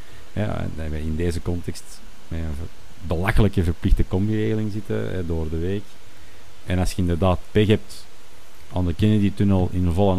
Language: Dutch